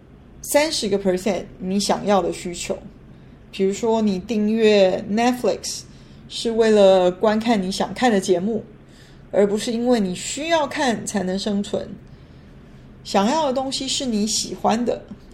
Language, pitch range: Chinese, 190-235 Hz